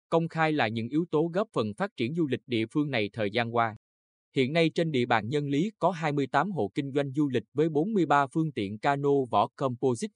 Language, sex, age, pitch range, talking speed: Vietnamese, male, 20-39, 115-155 Hz, 230 wpm